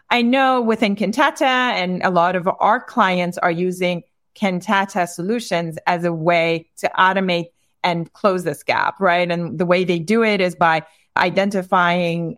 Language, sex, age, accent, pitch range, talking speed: English, female, 40-59, American, 175-205 Hz, 160 wpm